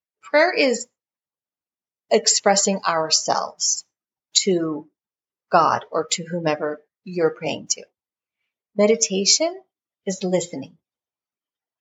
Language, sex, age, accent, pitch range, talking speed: English, female, 40-59, American, 175-240 Hz, 75 wpm